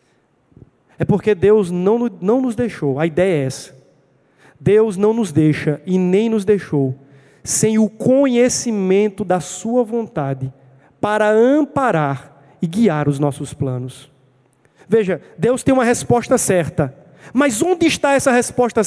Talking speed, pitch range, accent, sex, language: 135 wpm, 140-205 Hz, Brazilian, male, Portuguese